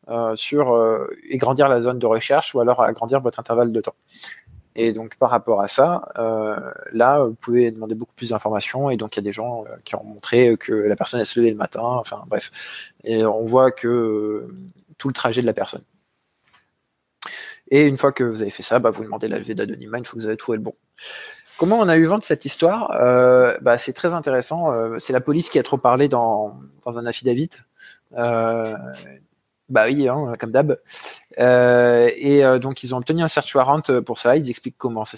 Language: French